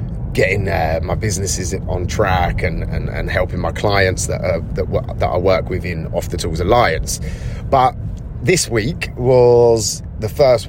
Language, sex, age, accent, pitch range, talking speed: English, male, 30-49, British, 85-110 Hz, 175 wpm